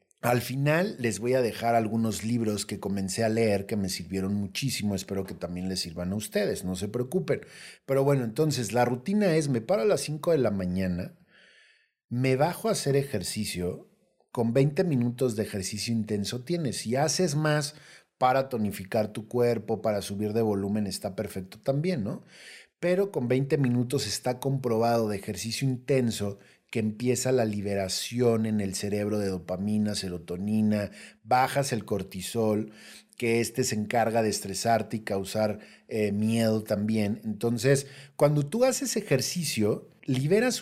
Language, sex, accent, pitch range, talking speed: Spanish, male, Mexican, 105-145 Hz, 155 wpm